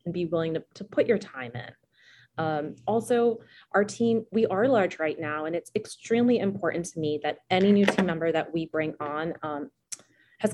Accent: American